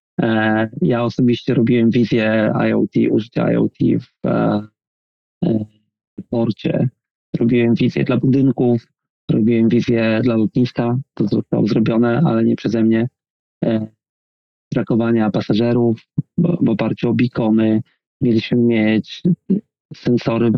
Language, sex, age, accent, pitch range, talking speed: Polish, male, 40-59, native, 110-125 Hz, 100 wpm